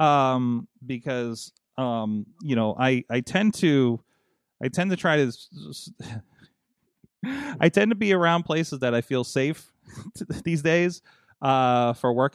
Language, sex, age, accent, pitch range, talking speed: English, male, 30-49, American, 110-145 Hz, 140 wpm